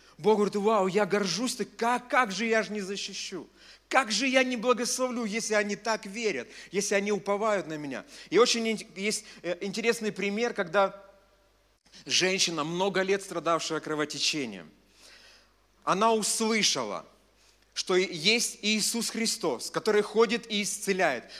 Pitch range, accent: 190-230 Hz, native